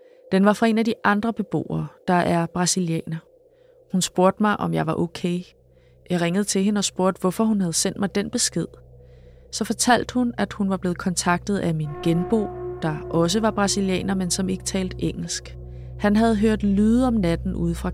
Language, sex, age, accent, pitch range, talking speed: Danish, female, 20-39, native, 155-200 Hz, 195 wpm